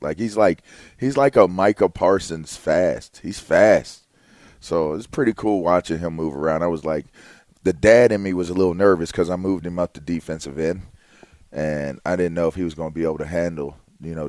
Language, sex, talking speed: English, male, 220 wpm